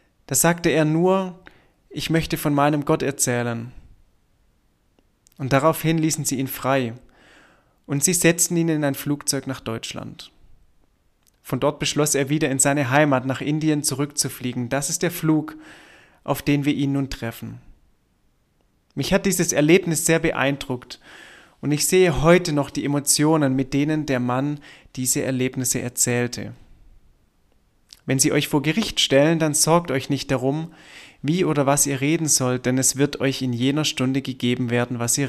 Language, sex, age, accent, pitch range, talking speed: German, male, 30-49, German, 125-155 Hz, 160 wpm